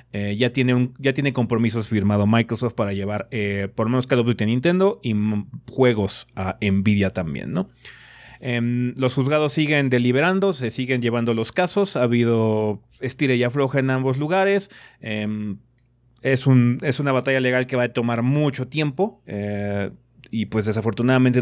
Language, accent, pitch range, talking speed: Spanish, Mexican, 110-135 Hz, 175 wpm